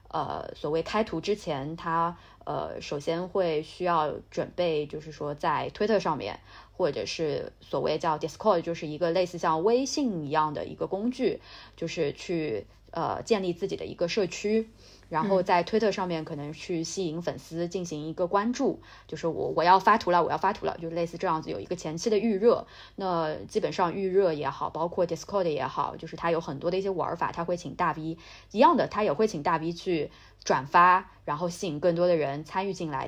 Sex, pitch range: female, 160-195 Hz